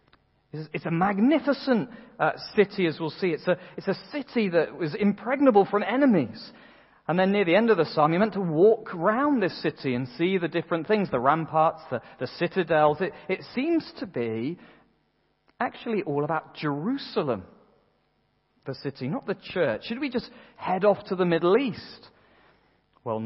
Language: English